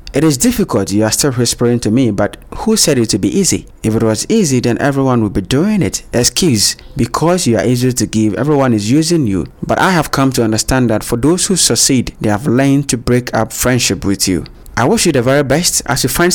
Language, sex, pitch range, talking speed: English, male, 105-130 Hz, 240 wpm